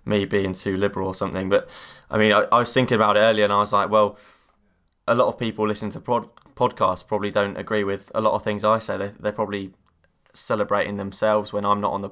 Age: 20-39